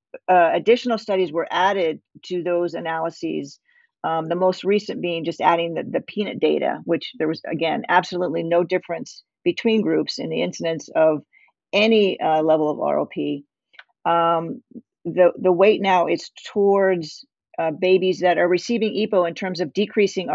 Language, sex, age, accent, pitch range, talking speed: English, female, 50-69, American, 155-185 Hz, 155 wpm